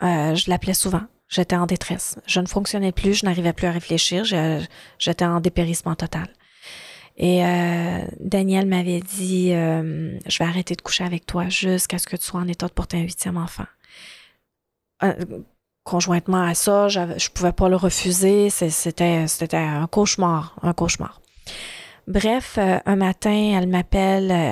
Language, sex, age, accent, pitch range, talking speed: English, female, 30-49, Canadian, 170-185 Hz, 170 wpm